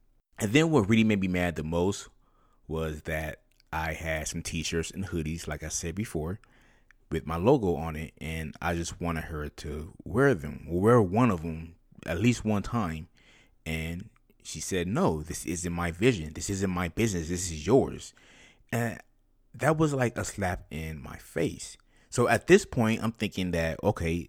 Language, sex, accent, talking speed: English, male, American, 185 wpm